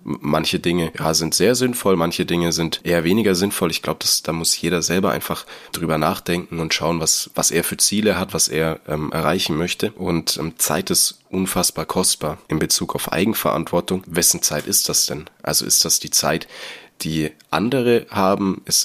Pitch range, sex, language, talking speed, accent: 75-90 Hz, male, German, 180 wpm, German